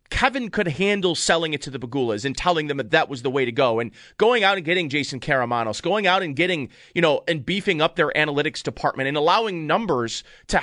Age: 30-49